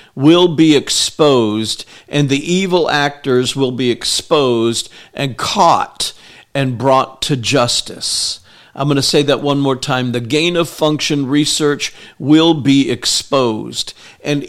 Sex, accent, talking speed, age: male, American, 135 wpm, 50-69